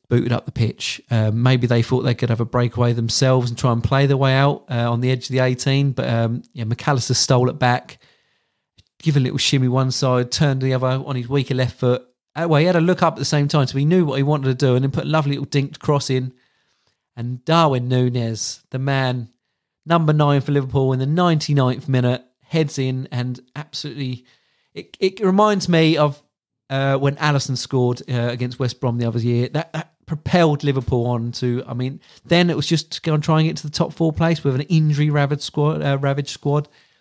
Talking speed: 225 wpm